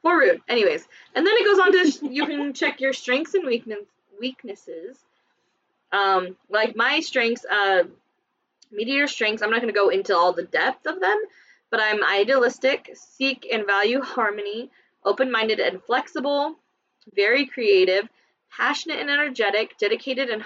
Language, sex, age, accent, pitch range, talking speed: English, female, 20-39, American, 210-315 Hz, 155 wpm